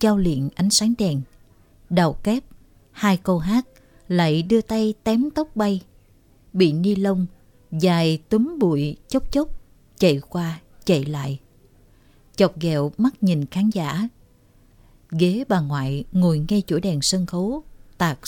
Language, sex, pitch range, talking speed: Vietnamese, female, 145-210 Hz, 145 wpm